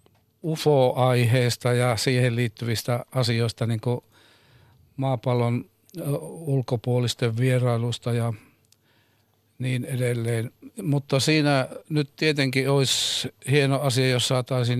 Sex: male